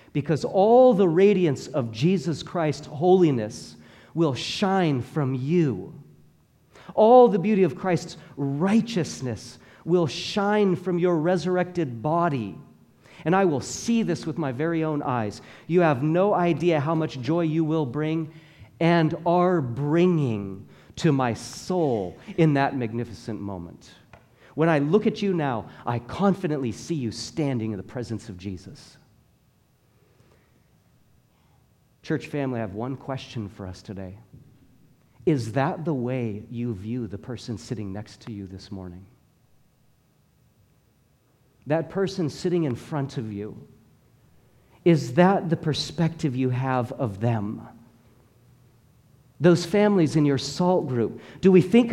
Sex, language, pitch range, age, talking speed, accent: male, English, 120-170 Hz, 40-59, 135 wpm, American